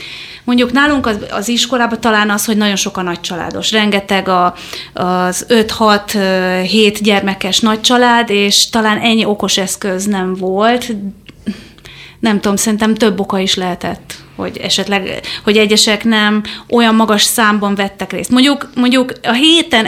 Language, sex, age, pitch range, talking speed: Hungarian, female, 30-49, 195-245 Hz, 140 wpm